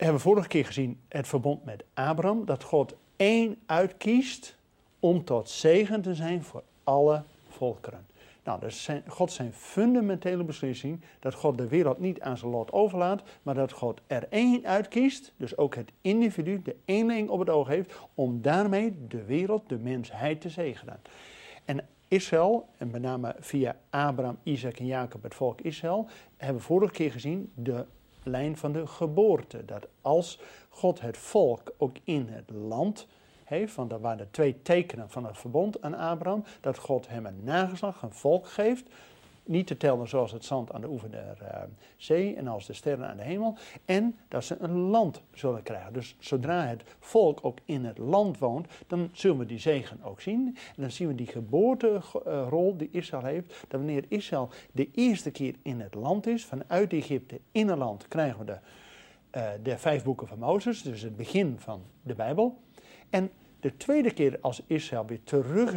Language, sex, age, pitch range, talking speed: Dutch, male, 50-69, 125-190 Hz, 185 wpm